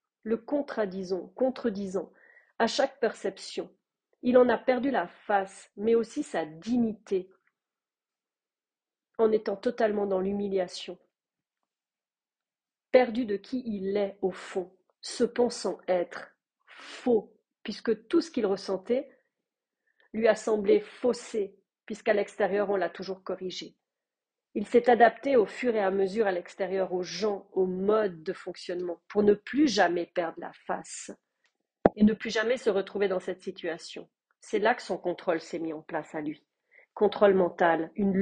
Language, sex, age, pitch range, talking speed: French, female, 40-59, 185-230 Hz, 145 wpm